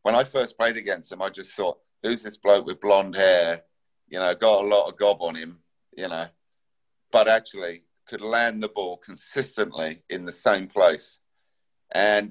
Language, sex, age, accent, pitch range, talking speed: English, male, 50-69, British, 100-130 Hz, 185 wpm